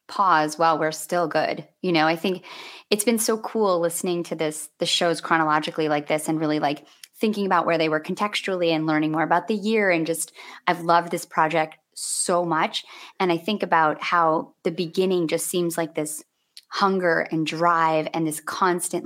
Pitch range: 160-185 Hz